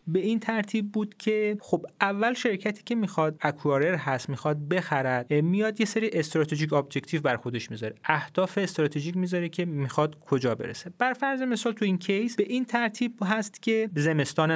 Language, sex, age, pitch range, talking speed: Persian, male, 30-49, 150-215 Hz, 170 wpm